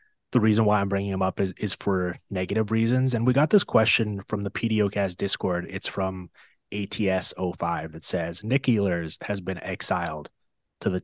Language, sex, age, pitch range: English, male, 30-49, 95-110 Hz